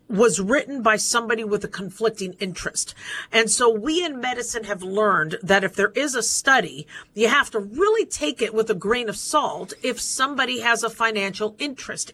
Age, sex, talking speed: 50-69, female, 190 wpm